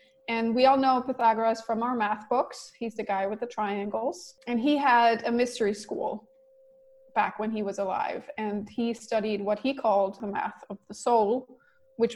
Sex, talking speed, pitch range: female, 190 wpm, 215-260 Hz